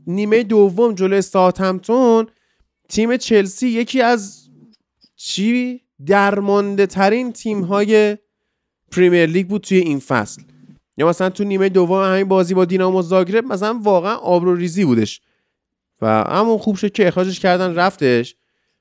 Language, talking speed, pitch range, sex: Persian, 135 wpm, 180-215 Hz, male